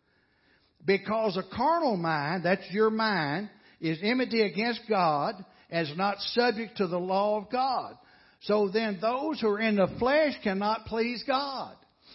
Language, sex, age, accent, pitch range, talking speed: English, male, 60-79, American, 195-235 Hz, 155 wpm